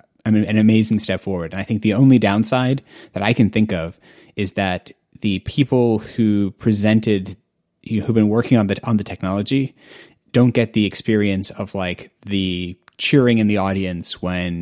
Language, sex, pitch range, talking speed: English, male, 95-110 Hz, 185 wpm